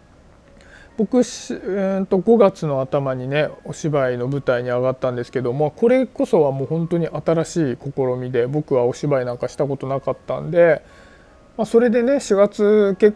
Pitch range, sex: 140-220 Hz, male